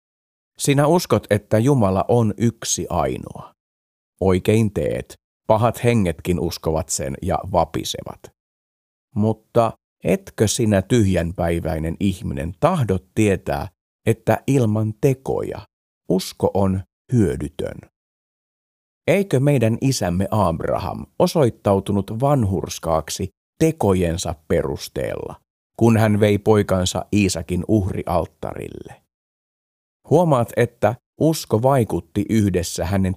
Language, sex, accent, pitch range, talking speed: Finnish, male, native, 85-115 Hz, 85 wpm